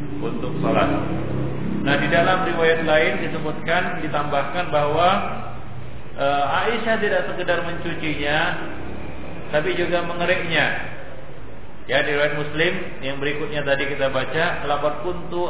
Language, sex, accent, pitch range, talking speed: Indonesian, male, native, 140-175 Hz, 110 wpm